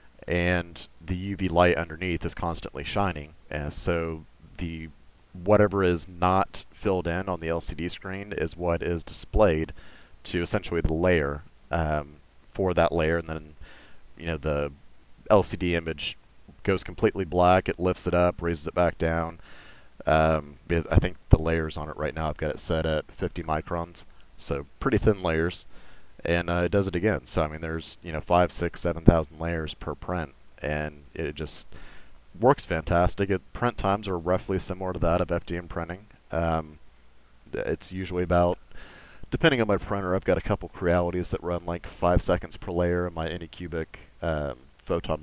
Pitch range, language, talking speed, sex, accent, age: 80-90 Hz, English, 170 wpm, male, American, 30-49